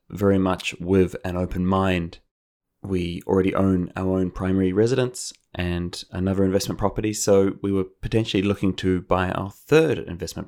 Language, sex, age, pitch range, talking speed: English, male, 20-39, 90-105 Hz, 155 wpm